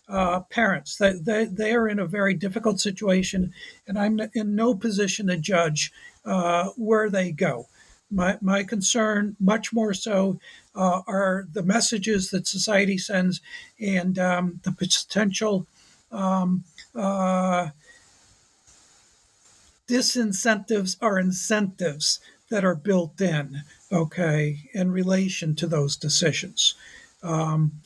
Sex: male